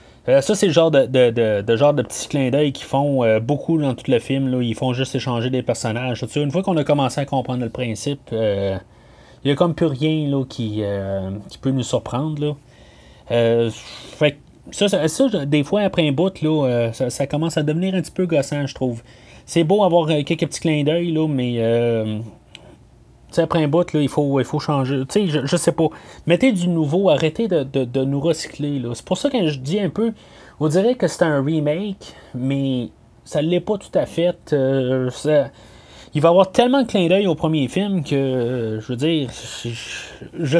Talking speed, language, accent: 230 wpm, French, Canadian